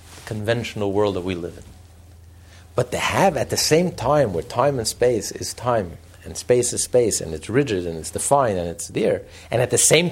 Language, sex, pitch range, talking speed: English, male, 110-175 Hz, 215 wpm